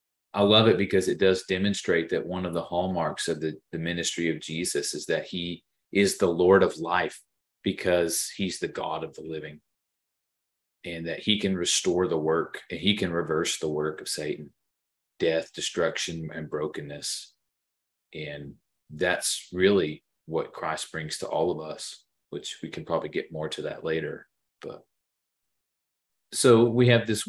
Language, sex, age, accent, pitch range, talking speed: English, male, 30-49, American, 80-95 Hz, 165 wpm